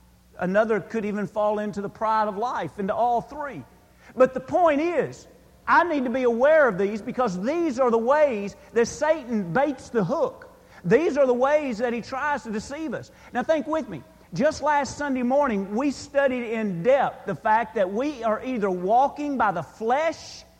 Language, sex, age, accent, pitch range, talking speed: English, male, 40-59, American, 210-275 Hz, 190 wpm